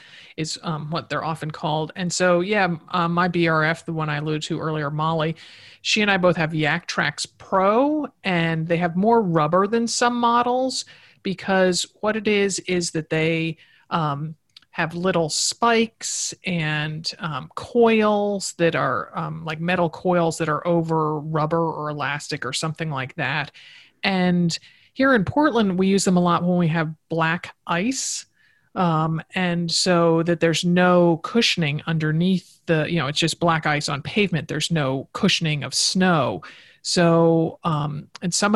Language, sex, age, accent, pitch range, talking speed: English, male, 40-59, American, 155-180 Hz, 165 wpm